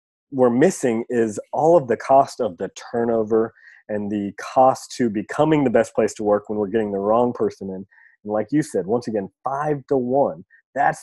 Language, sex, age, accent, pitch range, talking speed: English, male, 30-49, American, 110-145 Hz, 200 wpm